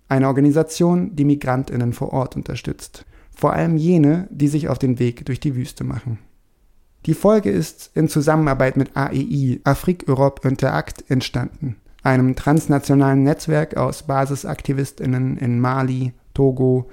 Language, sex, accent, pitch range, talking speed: German, male, German, 130-150 Hz, 135 wpm